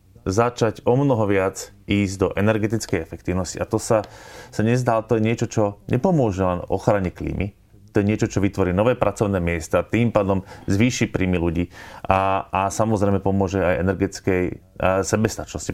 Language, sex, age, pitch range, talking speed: Slovak, male, 30-49, 95-115 Hz, 155 wpm